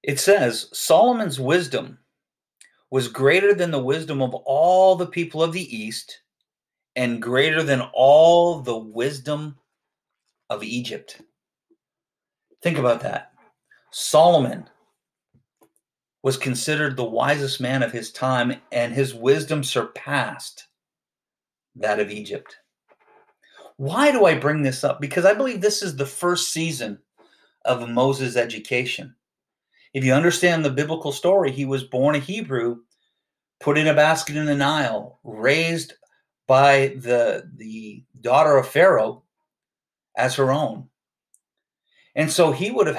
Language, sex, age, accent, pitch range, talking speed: English, male, 40-59, American, 125-165 Hz, 130 wpm